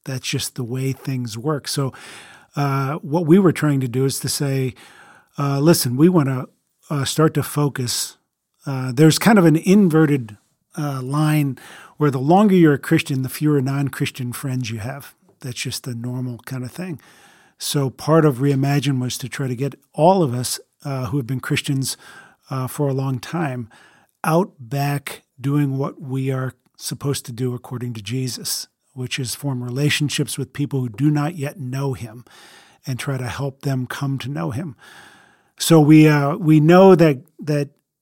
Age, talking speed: 40-59, 180 wpm